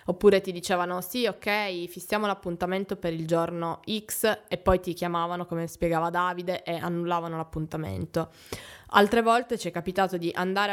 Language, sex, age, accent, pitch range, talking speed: Italian, female, 20-39, native, 170-190 Hz, 155 wpm